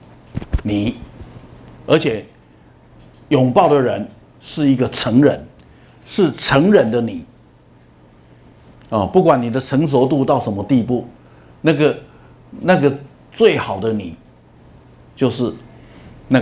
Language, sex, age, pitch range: Chinese, male, 60-79, 95-140 Hz